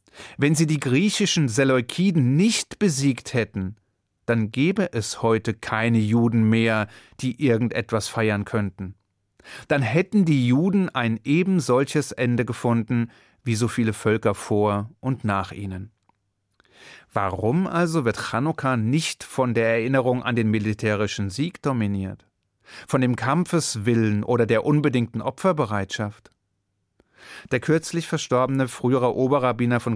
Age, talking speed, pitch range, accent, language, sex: 30-49, 120 wpm, 110-140 Hz, German, German, male